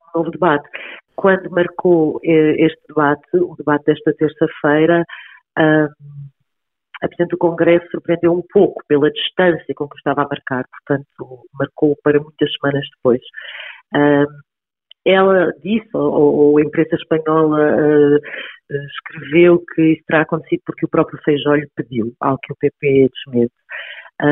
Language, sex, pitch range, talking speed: Portuguese, female, 145-165 Hz, 130 wpm